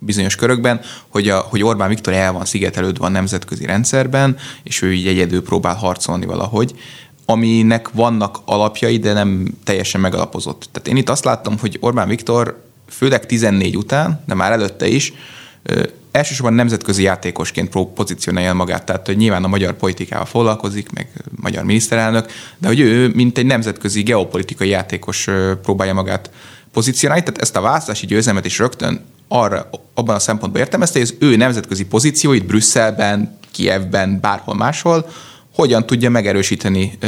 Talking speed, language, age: 155 wpm, Hungarian, 20-39